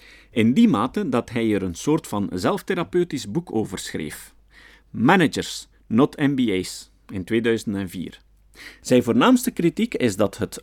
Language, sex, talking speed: Dutch, male, 135 wpm